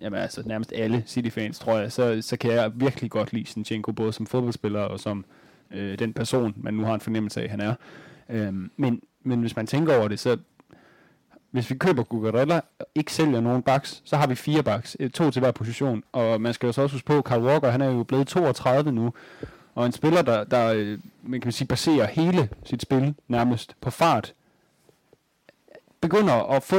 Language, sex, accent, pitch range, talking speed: Danish, male, native, 115-145 Hz, 205 wpm